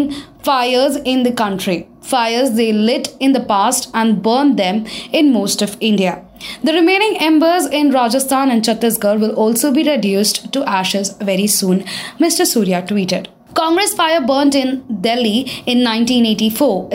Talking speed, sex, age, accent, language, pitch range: 150 wpm, female, 20-39, Indian, English, 215-280 Hz